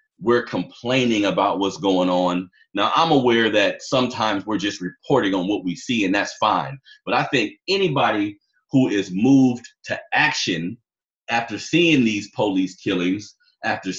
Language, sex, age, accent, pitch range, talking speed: English, male, 30-49, American, 100-135 Hz, 155 wpm